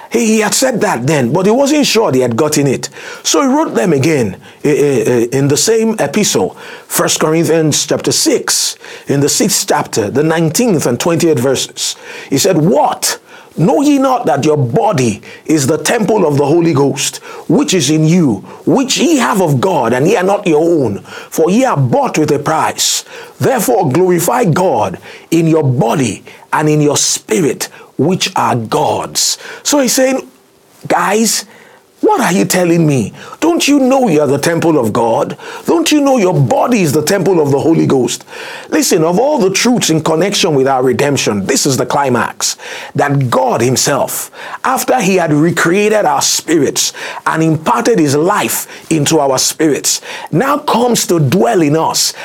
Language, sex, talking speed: English, male, 175 wpm